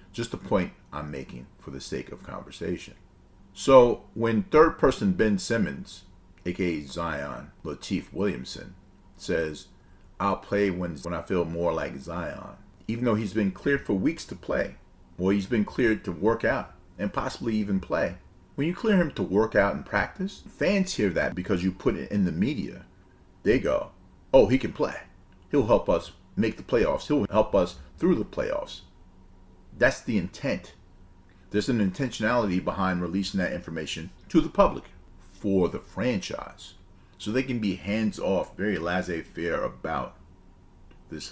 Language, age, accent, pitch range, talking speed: English, 40-59, American, 90-105 Hz, 165 wpm